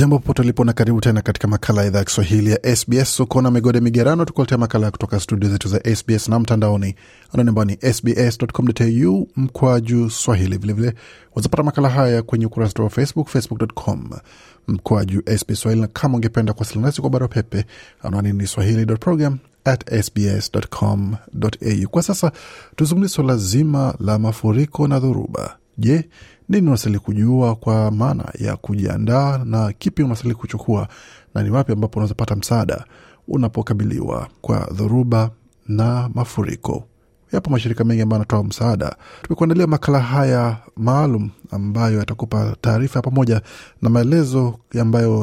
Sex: male